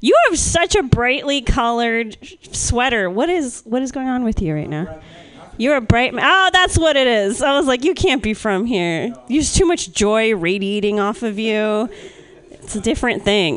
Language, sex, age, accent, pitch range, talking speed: English, female, 30-49, American, 200-265 Hz, 205 wpm